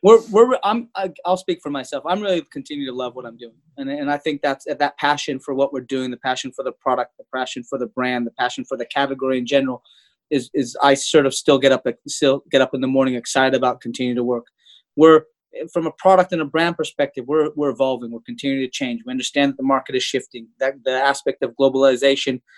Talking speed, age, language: 240 wpm, 20-39, English